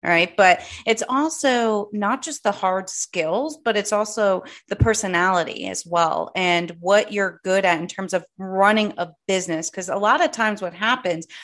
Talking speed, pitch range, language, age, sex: 180 wpm, 185-225 Hz, English, 30-49, female